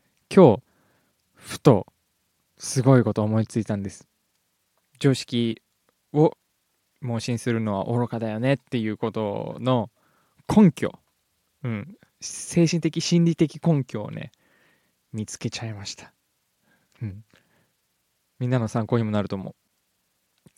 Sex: male